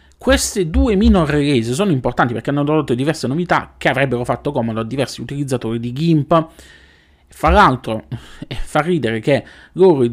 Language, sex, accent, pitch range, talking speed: Italian, male, native, 120-175 Hz, 160 wpm